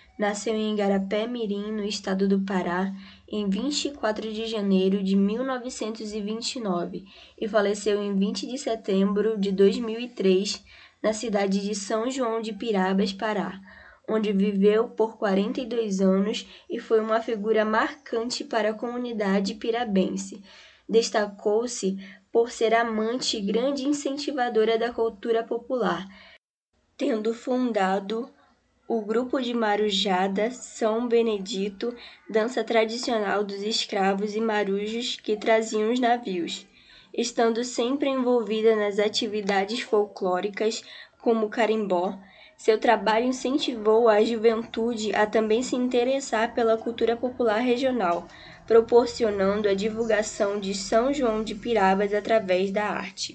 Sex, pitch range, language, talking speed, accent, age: female, 205-235 Hz, Portuguese, 115 wpm, Brazilian, 10-29